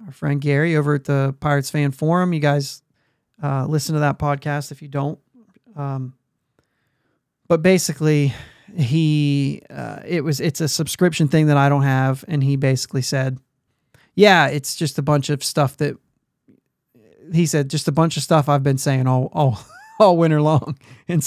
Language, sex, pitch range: English, male, 140-160 Hz